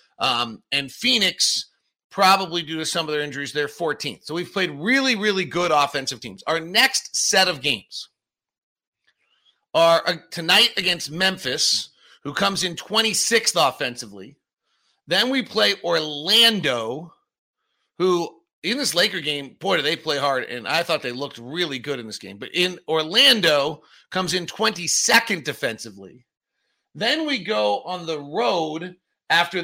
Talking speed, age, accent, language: 145 wpm, 40-59, American, English